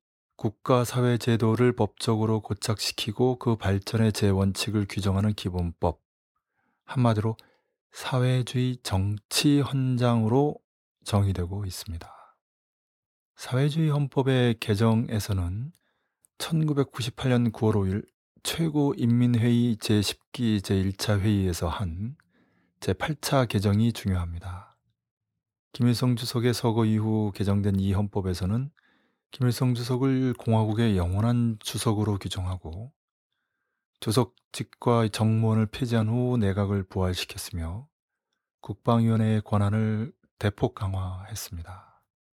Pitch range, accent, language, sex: 100-125 Hz, native, Korean, male